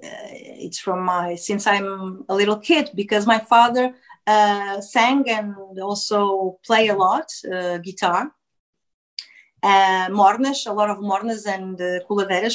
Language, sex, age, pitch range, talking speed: English, female, 30-49, 190-240 Hz, 140 wpm